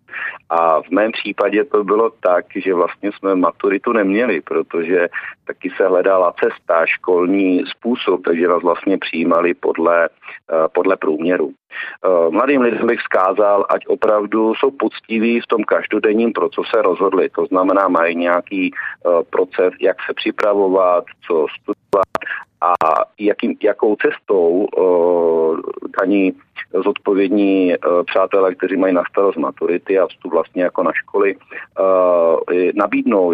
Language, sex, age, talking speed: Czech, male, 40-59, 130 wpm